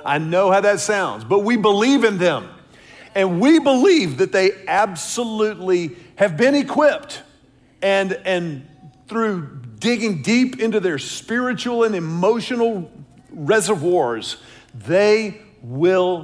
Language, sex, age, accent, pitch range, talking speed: English, male, 50-69, American, 175-230 Hz, 120 wpm